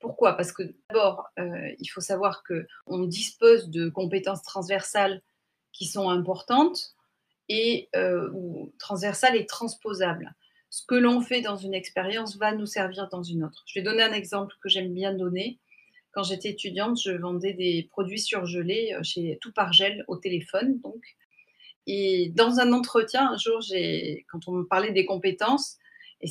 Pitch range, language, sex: 180-225 Hz, French, female